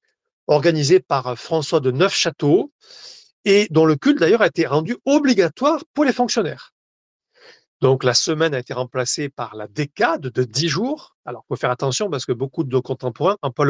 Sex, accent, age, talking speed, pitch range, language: male, French, 40-59, 175 wpm, 130-210 Hz, French